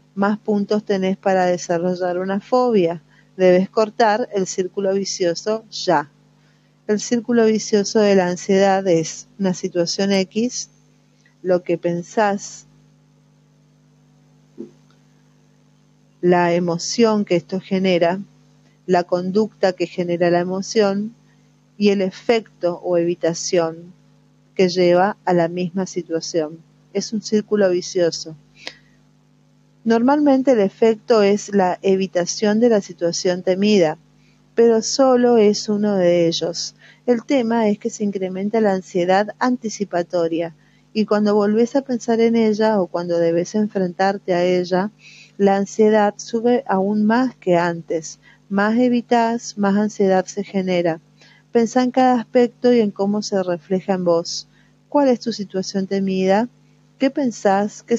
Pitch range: 180-220 Hz